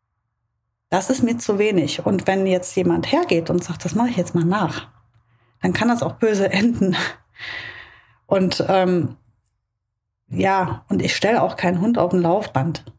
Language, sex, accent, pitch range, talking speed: German, female, German, 170-220 Hz, 165 wpm